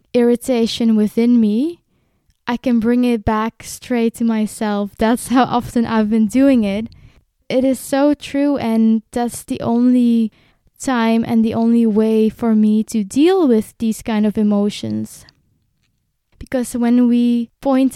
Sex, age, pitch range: female, 10-29, 220-245 Hz